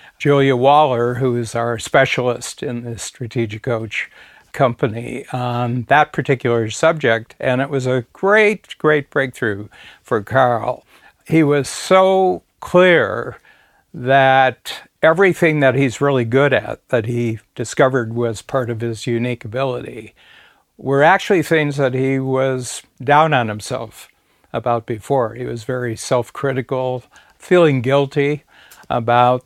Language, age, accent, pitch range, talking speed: English, 60-79, American, 120-140 Hz, 125 wpm